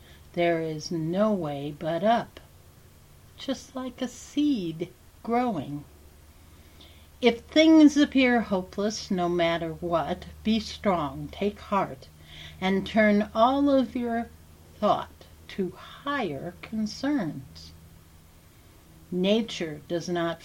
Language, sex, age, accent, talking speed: English, female, 60-79, American, 100 wpm